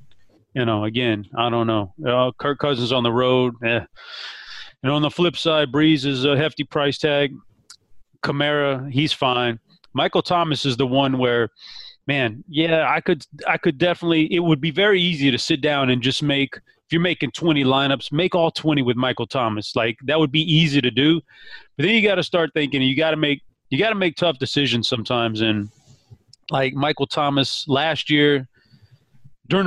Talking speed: 200 wpm